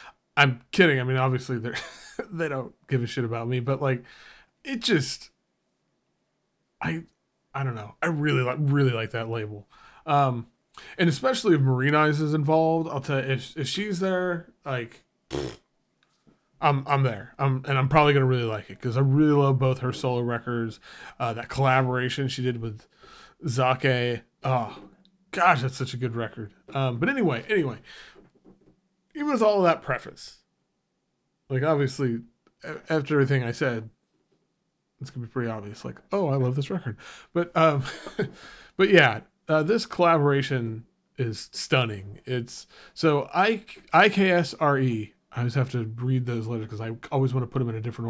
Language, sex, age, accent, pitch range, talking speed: English, male, 20-39, American, 120-150 Hz, 165 wpm